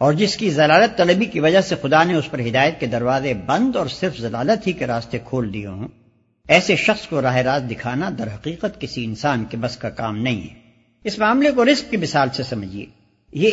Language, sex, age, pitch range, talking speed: Urdu, male, 60-79, 125-205 Hz, 220 wpm